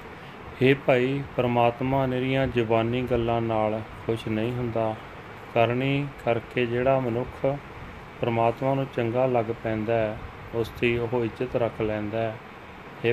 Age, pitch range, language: 30-49, 110-125 Hz, Punjabi